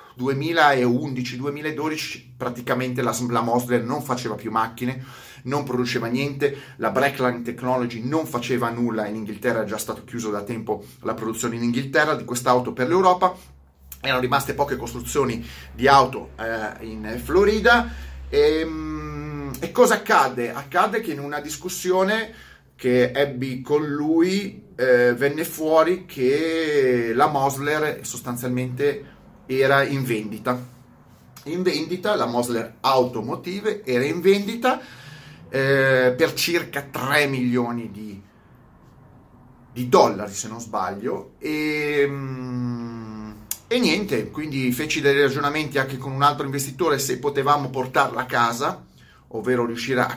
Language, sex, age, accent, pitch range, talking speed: Italian, male, 30-49, native, 120-145 Hz, 125 wpm